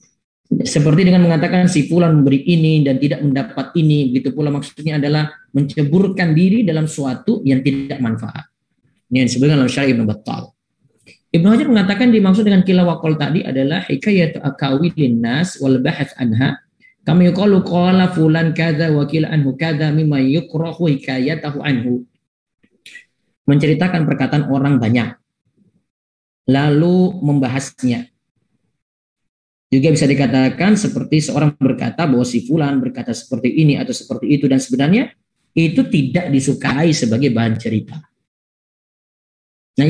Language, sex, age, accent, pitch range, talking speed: Indonesian, male, 20-39, native, 135-175 Hz, 120 wpm